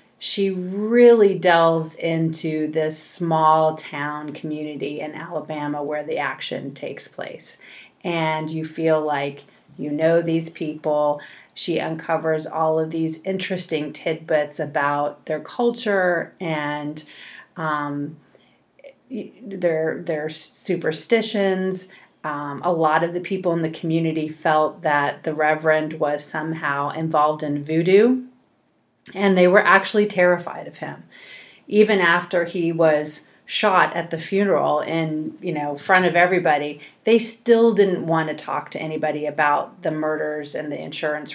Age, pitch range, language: 30-49, 155-185 Hz, English